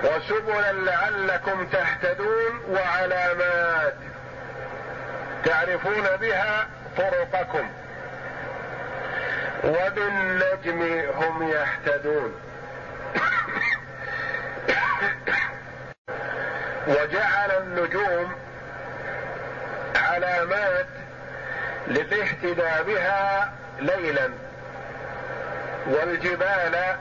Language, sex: Arabic, male